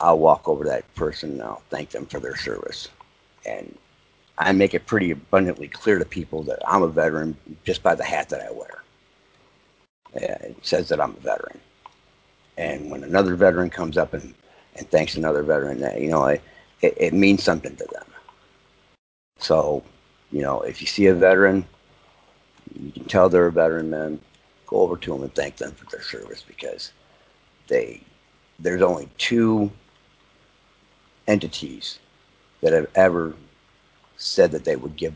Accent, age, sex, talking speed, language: American, 60-79, male, 170 wpm, English